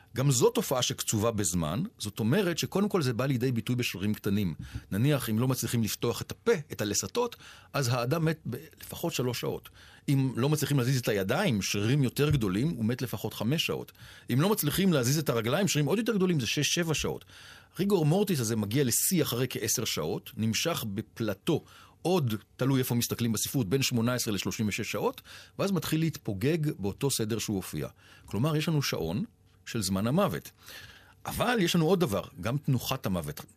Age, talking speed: 40-59, 155 wpm